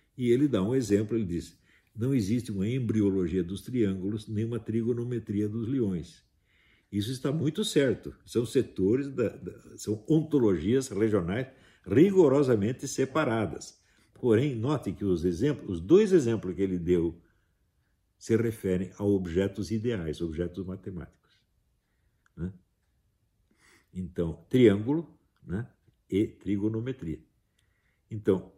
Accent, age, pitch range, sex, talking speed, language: Brazilian, 60-79, 90-120 Hz, male, 110 wpm, Portuguese